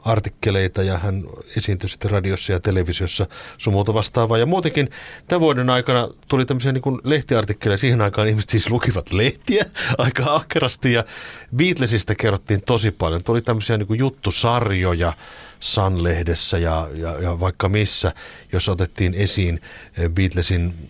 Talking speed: 130 wpm